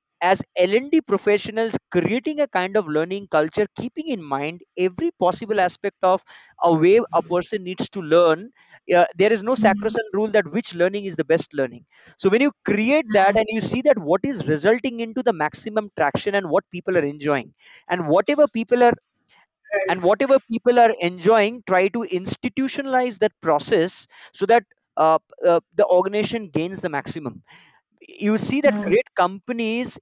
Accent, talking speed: Indian, 170 wpm